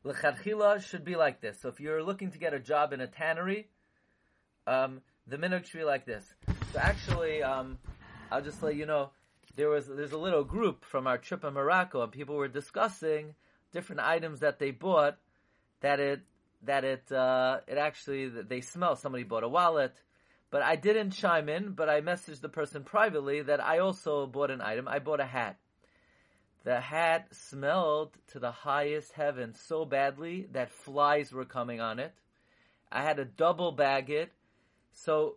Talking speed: 180 wpm